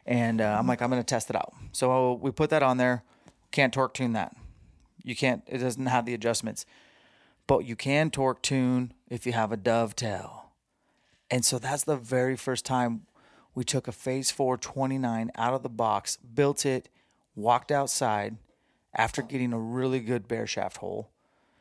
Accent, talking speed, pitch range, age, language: American, 185 wpm, 115-130 Hz, 30-49, English